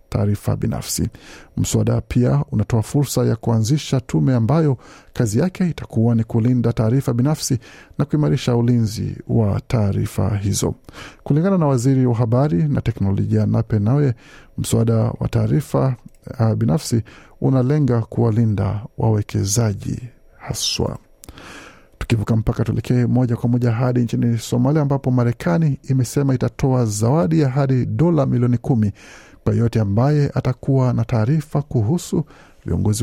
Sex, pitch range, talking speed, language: male, 110-135 Hz, 120 wpm, Swahili